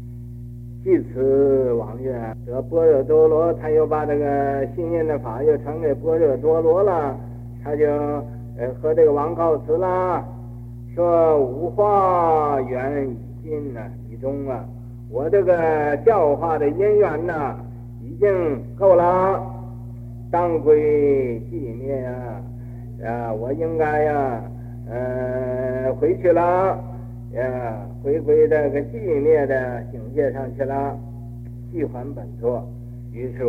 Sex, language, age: male, Chinese, 60-79